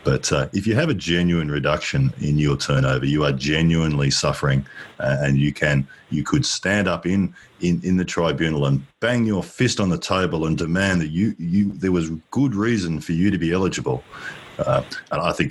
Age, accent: 40-59, Australian